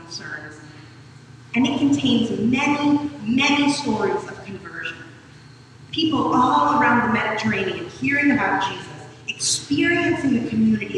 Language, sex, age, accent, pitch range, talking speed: English, female, 40-59, American, 175-270 Hz, 110 wpm